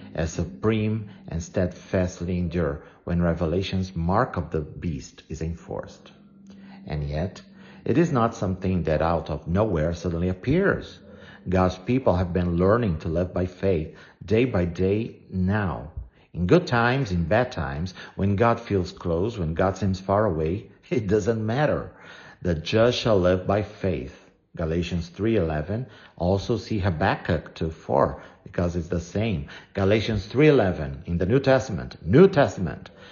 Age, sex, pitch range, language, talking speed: 50-69, male, 85-115 Hz, English, 145 wpm